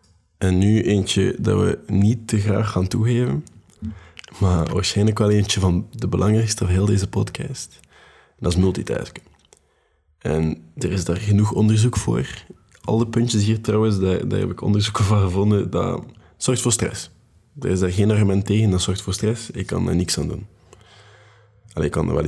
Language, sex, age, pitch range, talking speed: Dutch, male, 20-39, 90-110 Hz, 180 wpm